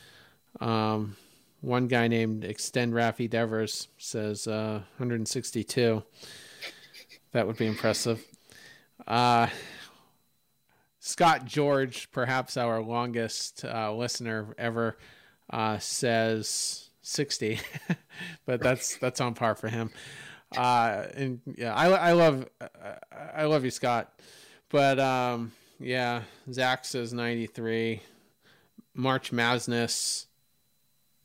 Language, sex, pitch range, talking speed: English, male, 115-155 Hz, 105 wpm